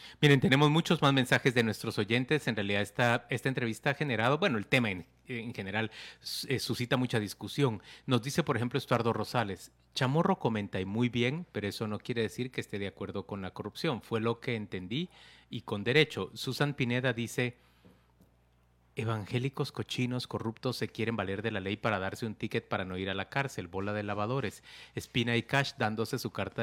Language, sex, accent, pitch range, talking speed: Spanish, male, Mexican, 105-130 Hz, 195 wpm